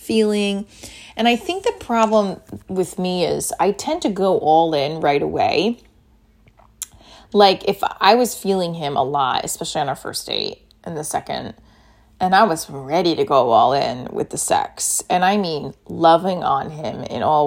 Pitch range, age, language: 170-215 Hz, 30-49, English